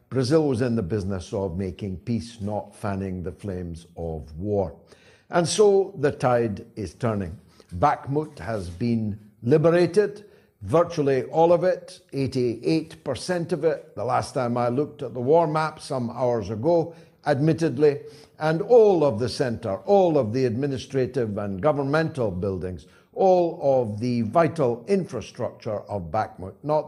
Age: 60-79